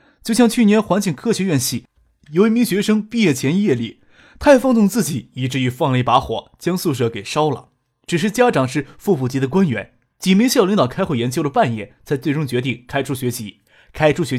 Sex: male